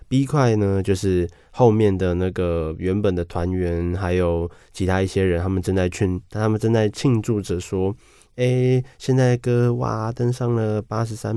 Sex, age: male, 20-39